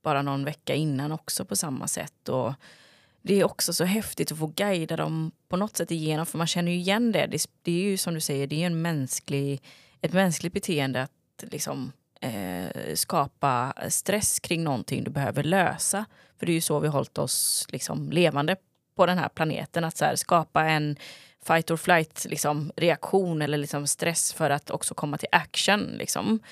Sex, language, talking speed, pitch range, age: female, Swedish, 185 wpm, 145-180 Hz, 20-39